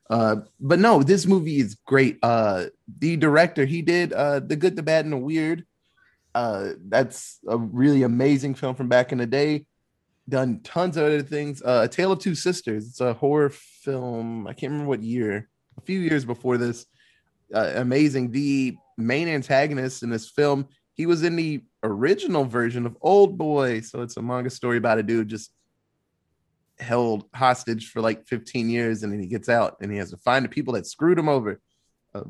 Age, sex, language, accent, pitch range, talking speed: 20-39, male, English, American, 120-150 Hz, 195 wpm